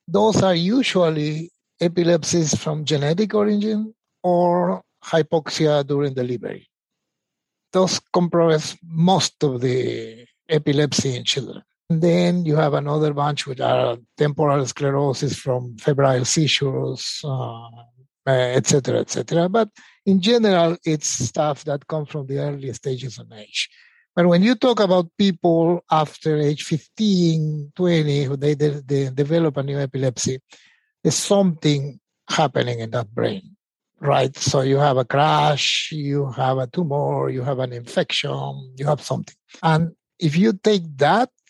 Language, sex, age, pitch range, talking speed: English, male, 60-79, 135-175 Hz, 135 wpm